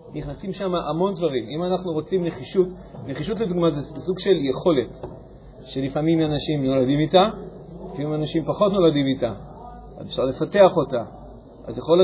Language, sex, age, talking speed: Hebrew, male, 40-59, 145 wpm